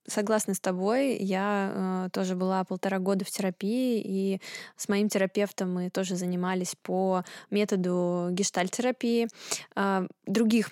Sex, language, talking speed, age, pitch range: female, Russian, 130 wpm, 20-39, 185-210 Hz